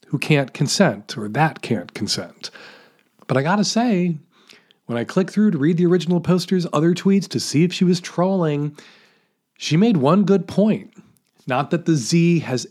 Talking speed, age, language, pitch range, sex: 180 wpm, 40-59, English, 130-185 Hz, male